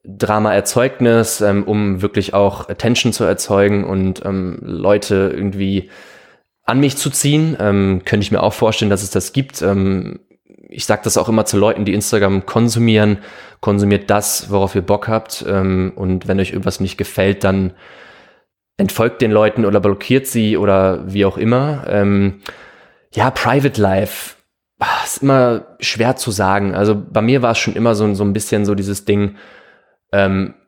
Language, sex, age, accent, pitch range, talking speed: German, male, 20-39, German, 100-115 Hz, 165 wpm